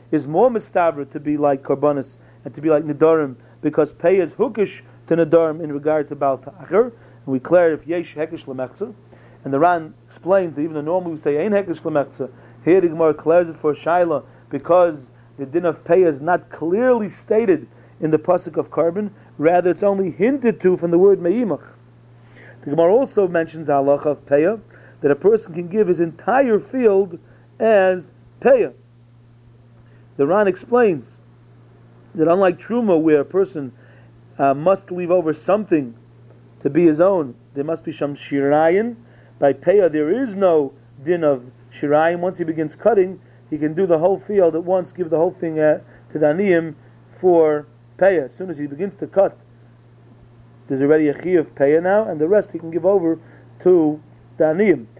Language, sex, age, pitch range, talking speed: English, male, 40-59, 135-180 Hz, 180 wpm